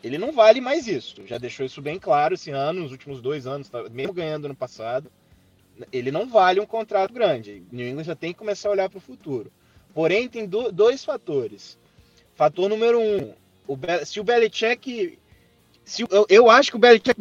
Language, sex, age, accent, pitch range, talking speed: English, male, 20-39, Brazilian, 160-225 Hz, 195 wpm